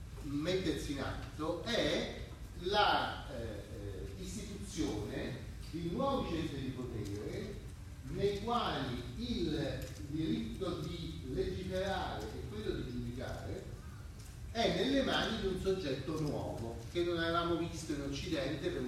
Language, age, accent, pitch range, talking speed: Italian, 40-59, native, 110-160 Hz, 115 wpm